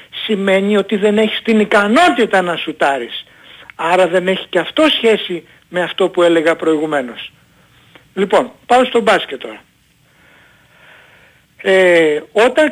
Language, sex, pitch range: Greek, male, 175-255 Hz